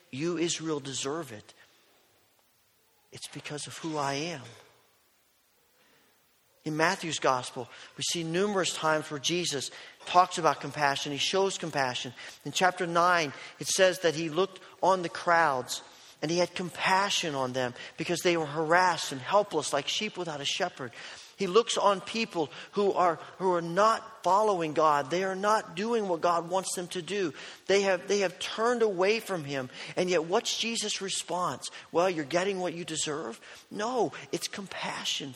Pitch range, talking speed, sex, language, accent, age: 150-190 Hz, 165 wpm, male, English, American, 40-59